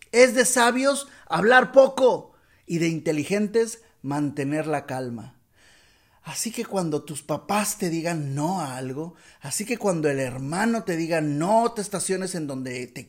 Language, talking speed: Spanish, 155 wpm